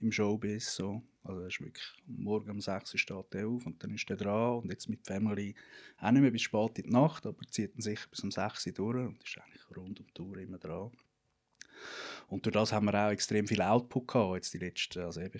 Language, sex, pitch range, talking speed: English, male, 95-120 Hz, 250 wpm